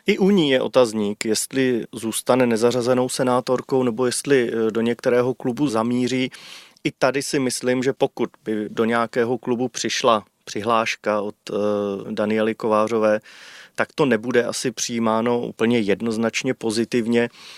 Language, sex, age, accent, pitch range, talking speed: Czech, male, 30-49, native, 110-125 Hz, 130 wpm